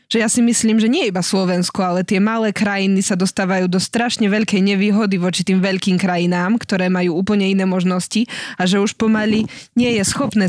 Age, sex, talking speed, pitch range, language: 20-39, female, 195 wpm, 175-200 Hz, Slovak